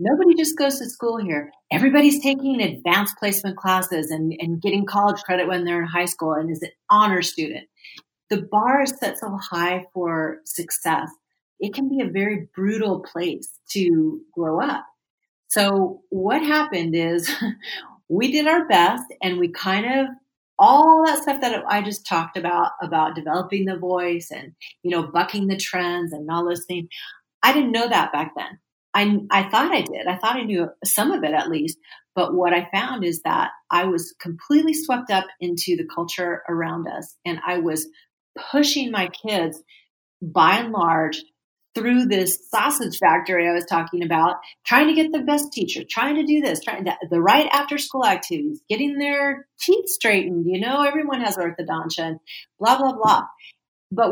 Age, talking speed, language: 40-59, 175 wpm, English